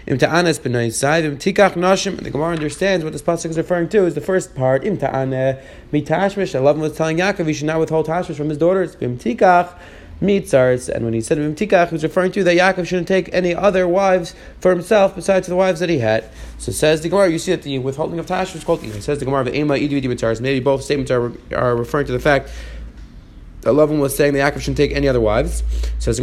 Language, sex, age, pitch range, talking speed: English, male, 30-49, 135-180 Hz, 195 wpm